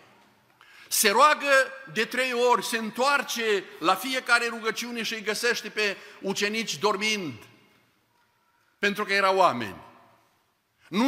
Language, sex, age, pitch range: Romanian, male, 50-69, 195-250 Hz